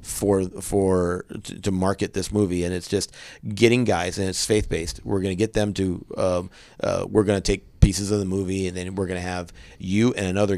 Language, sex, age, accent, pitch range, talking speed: English, male, 30-49, American, 85-100 Hz, 235 wpm